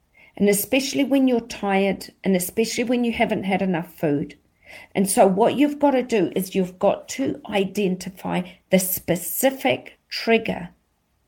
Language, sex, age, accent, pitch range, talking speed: English, female, 50-69, British, 190-245 Hz, 150 wpm